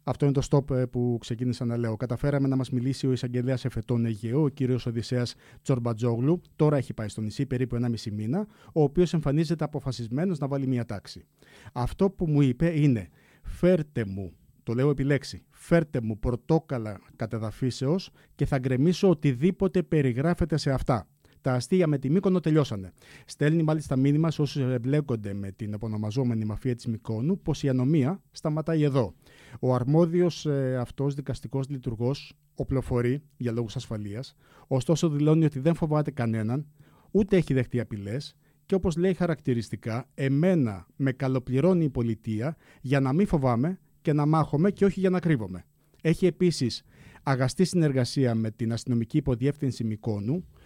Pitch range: 120-155 Hz